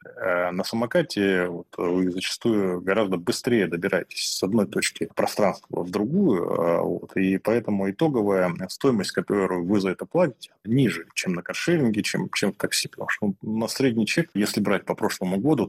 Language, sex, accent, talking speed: Russian, male, native, 160 wpm